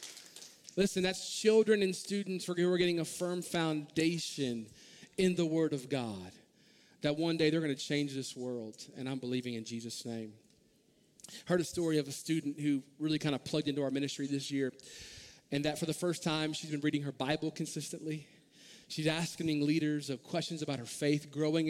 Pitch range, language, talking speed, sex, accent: 145-175 Hz, English, 190 wpm, male, American